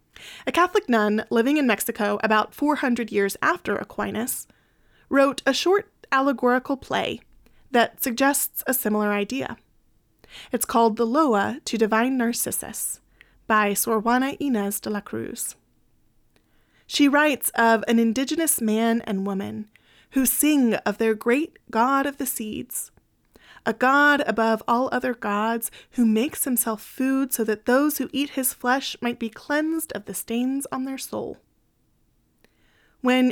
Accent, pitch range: American, 225-285 Hz